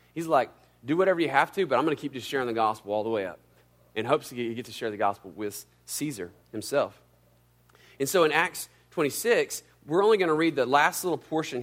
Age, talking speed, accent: 30-49, 235 wpm, American